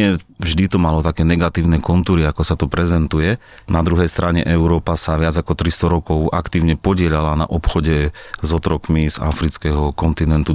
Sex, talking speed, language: male, 160 wpm, Slovak